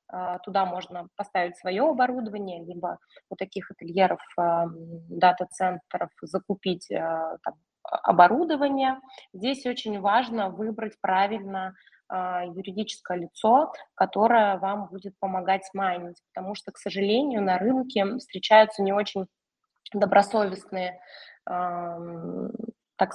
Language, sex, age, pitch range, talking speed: Russian, female, 20-39, 185-220 Hz, 95 wpm